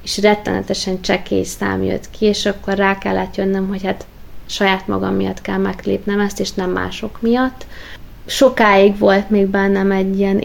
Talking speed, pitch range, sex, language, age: 165 wpm, 185-200 Hz, female, Hungarian, 20-39